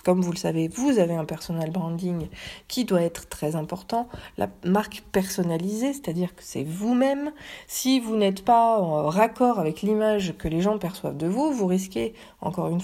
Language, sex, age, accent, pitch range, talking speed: French, female, 40-59, French, 175-240 Hz, 180 wpm